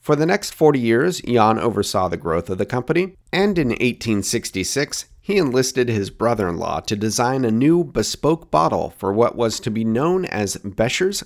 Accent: American